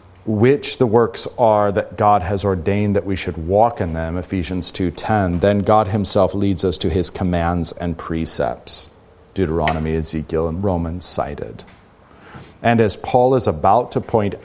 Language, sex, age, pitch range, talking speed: English, male, 40-59, 85-105 Hz, 160 wpm